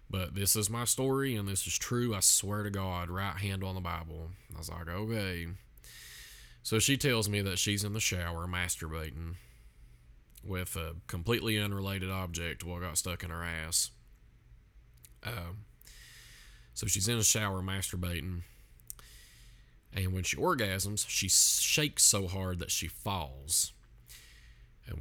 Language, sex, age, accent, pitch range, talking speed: English, male, 20-39, American, 85-110 Hz, 150 wpm